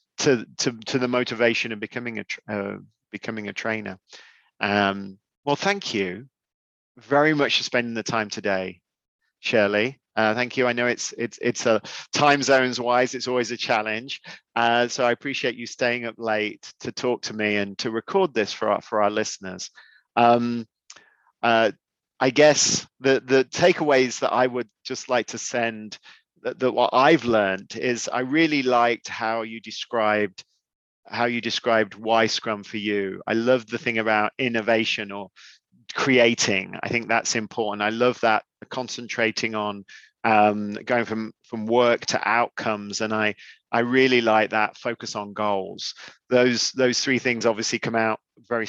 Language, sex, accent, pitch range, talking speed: English, male, British, 110-125 Hz, 165 wpm